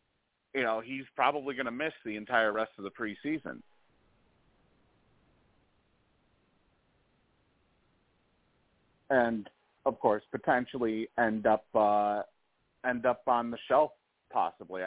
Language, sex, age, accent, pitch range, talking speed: English, male, 40-59, American, 105-130 Hz, 105 wpm